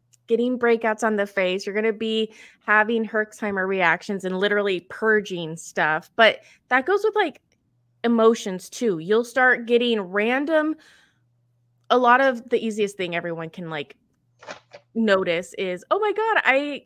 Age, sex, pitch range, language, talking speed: 20-39, female, 200-270 Hz, English, 150 wpm